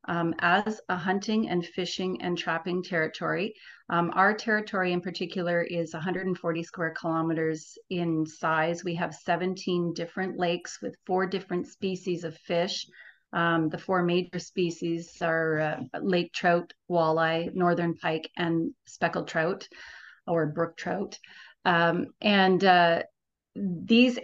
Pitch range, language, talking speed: 170-190 Hz, English, 130 wpm